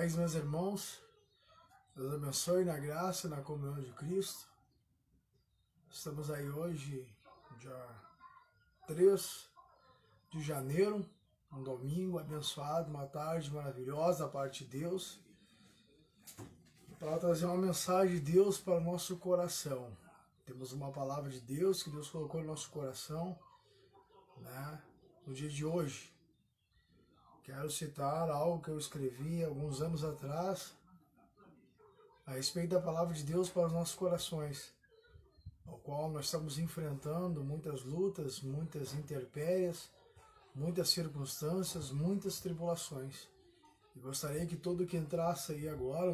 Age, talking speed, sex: 20-39, 120 wpm, male